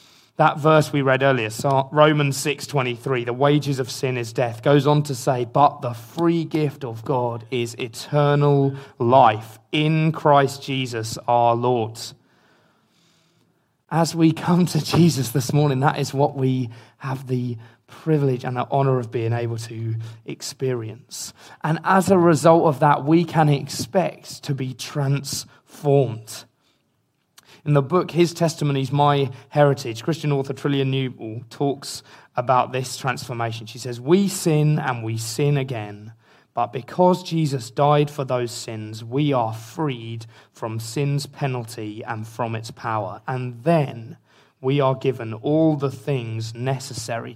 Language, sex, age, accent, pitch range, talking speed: English, male, 30-49, British, 120-145 Hz, 145 wpm